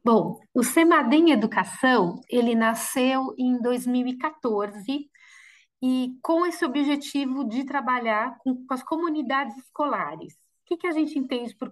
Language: Portuguese